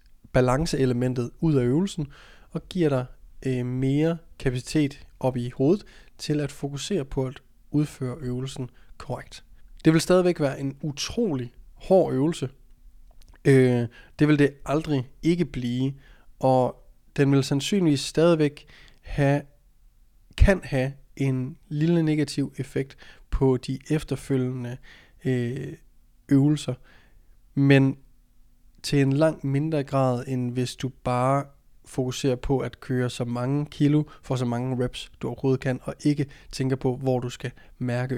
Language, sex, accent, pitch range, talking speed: Danish, male, native, 125-145 Hz, 135 wpm